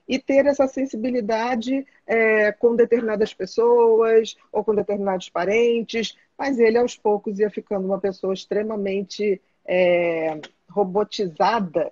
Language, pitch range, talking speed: Portuguese, 200-255 Hz, 105 wpm